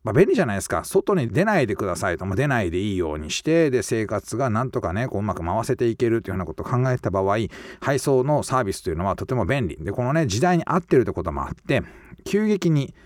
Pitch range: 95-140 Hz